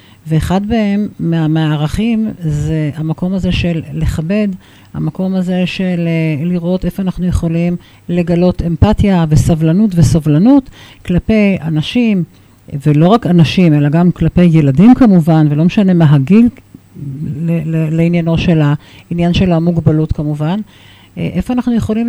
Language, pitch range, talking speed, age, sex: Hebrew, 165-215 Hz, 115 wpm, 50-69, female